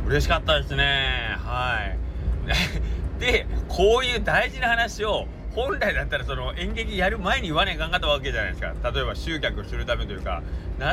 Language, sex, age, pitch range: Japanese, male, 40-59, 75-95 Hz